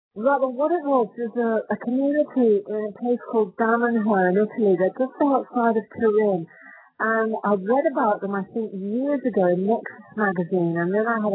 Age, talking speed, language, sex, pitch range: 50-69, 190 wpm, English, female, 190-230 Hz